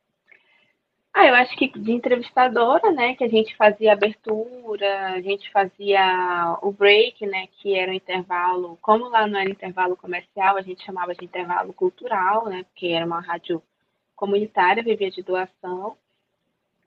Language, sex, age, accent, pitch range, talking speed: Portuguese, female, 20-39, Brazilian, 195-235 Hz, 155 wpm